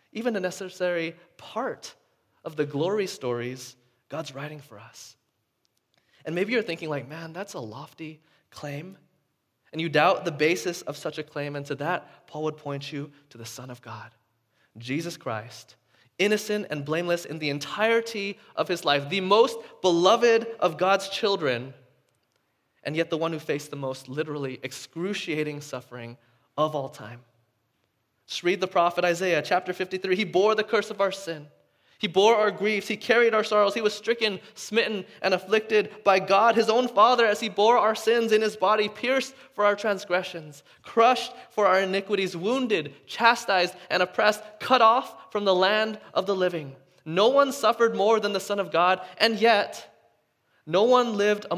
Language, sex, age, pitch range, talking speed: English, male, 20-39, 145-210 Hz, 175 wpm